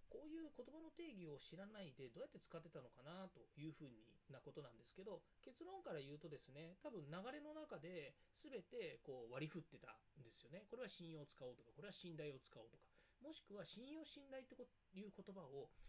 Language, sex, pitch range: Japanese, male, 140-235 Hz